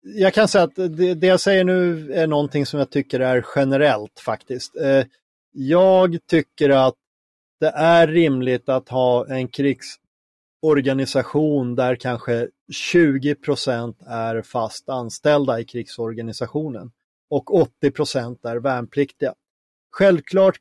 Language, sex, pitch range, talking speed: Swedish, male, 125-155 Hz, 115 wpm